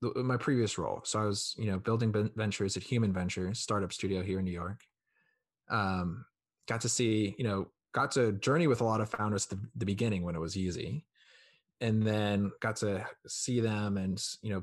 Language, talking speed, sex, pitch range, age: English, 205 wpm, male, 95-115 Hz, 20-39